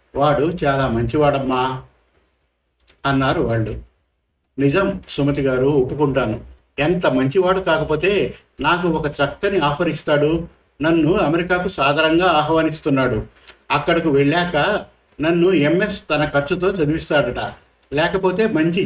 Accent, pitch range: native, 135-170 Hz